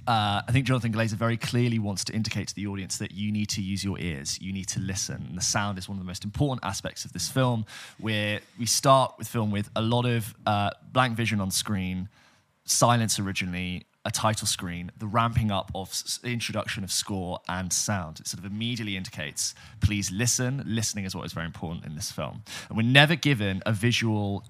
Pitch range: 100-115 Hz